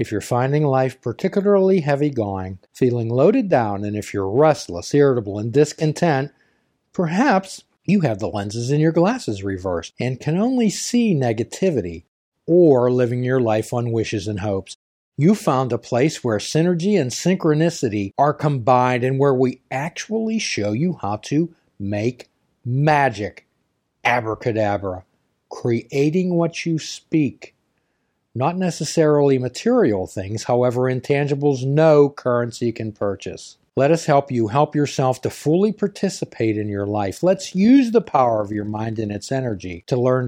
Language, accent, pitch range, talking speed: English, American, 110-160 Hz, 145 wpm